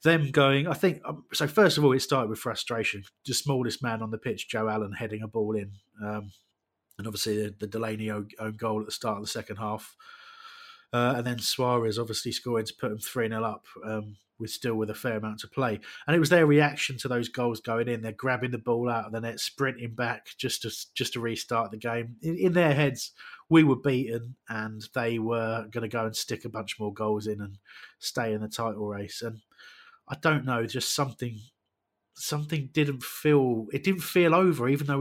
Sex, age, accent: male, 20-39, British